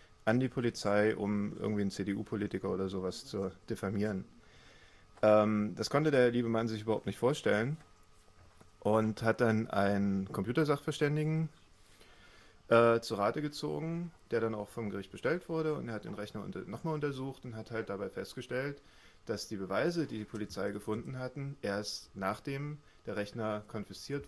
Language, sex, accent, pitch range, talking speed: German, male, German, 95-120 Hz, 155 wpm